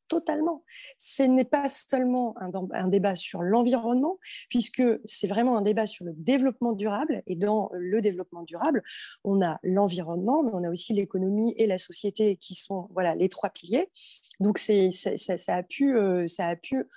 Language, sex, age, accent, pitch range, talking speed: French, female, 20-39, French, 185-250 Hz, 180 wpm